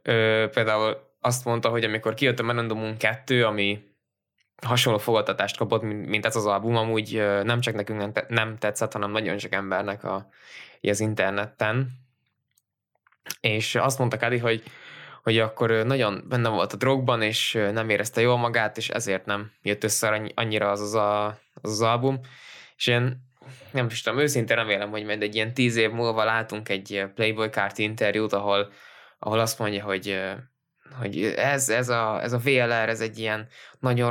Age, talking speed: 20-39, 165 wpm